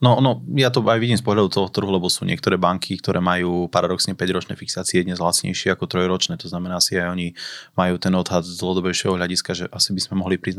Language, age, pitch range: Slovak, 20-39, 90-105 Hz